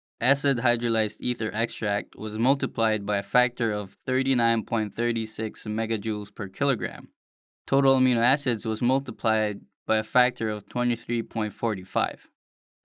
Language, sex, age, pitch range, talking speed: English, male, 10-29, 110-125 Hz, 110 wpm